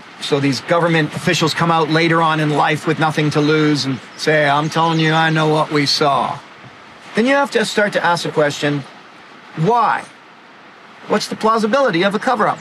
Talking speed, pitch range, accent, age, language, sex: 190 wpm, 155-200 Hz, American, 40-59, English, male